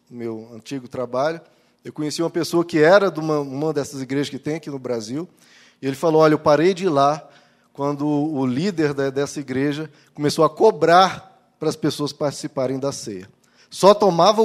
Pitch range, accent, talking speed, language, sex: 145-190 Hz, Brazilian, 185 wpm, Portuguese, male